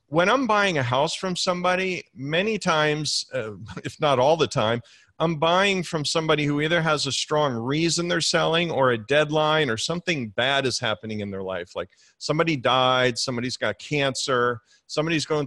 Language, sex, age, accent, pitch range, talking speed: English, male, 40-59, American, 120-155 Hz, 180 wpm